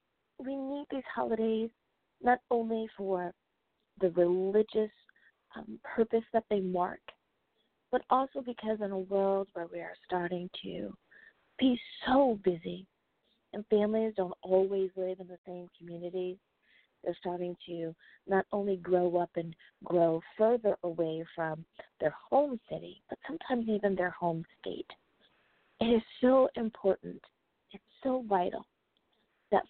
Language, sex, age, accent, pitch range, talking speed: English, female, 40-59, American, 175-225 Hz, 135 wpm